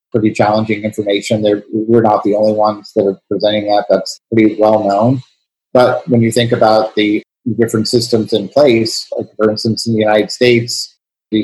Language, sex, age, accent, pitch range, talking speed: English, male, 30-49, American, 105-115 Hz, 185 wpm